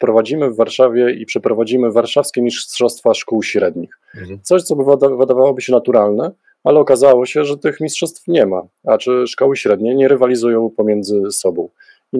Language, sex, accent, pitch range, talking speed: Polish, male, native, 110-135 Hz, 155 wpm